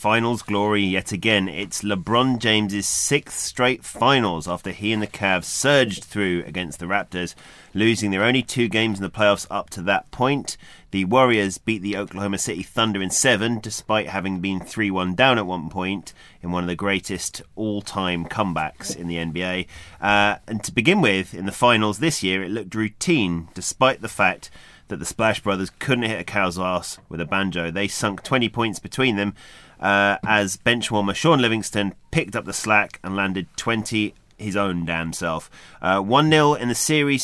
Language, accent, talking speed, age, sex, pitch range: English, British, 185 wpm, 30-49, male, 95-115 Hz